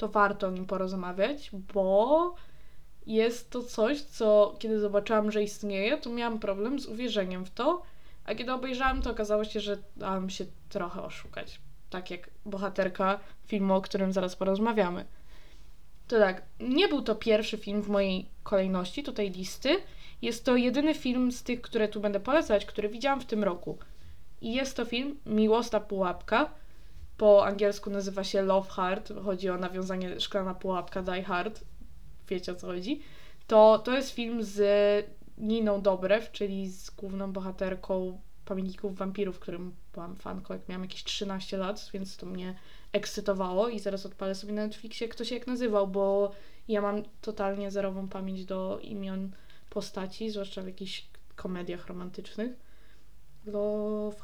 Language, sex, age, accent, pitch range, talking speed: Polish, female, 20-39, native, 190-220 Hz, 155 wpm